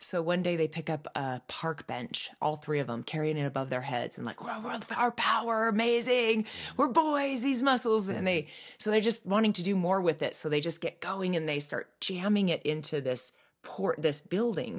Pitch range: 135-190 Hz